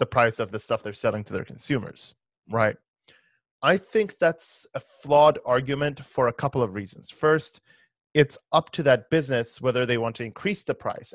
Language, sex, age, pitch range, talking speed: English, male, 30-49, 115-140 Hz, 190 wpm